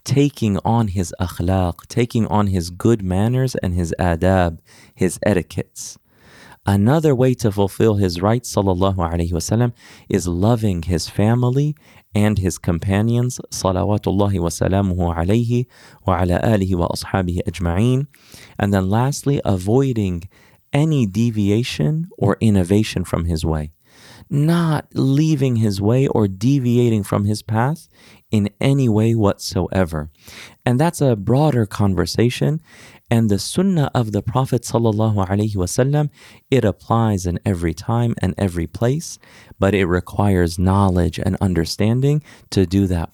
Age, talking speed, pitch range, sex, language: 30-49, 115 wpm, 95-125 Hz, male, English